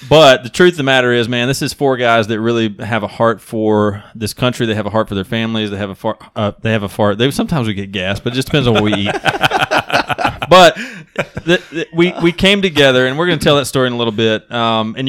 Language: English